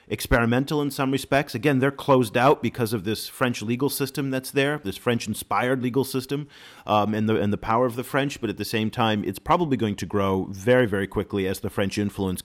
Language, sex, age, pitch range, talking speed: English, male, 40-59, 100-140 Hz, 220 wpm